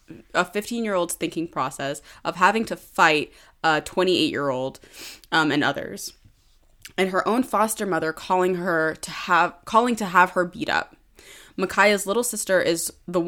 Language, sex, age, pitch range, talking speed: English, female, 20-39, 160-195 Hz, 165 wpm